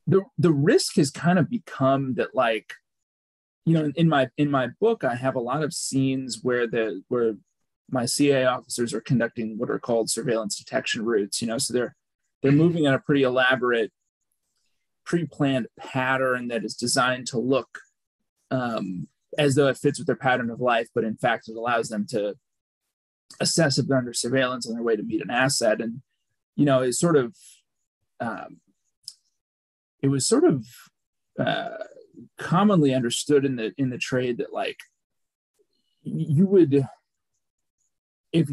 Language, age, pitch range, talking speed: English, 30-49, 125-150 Hz, 165 wpm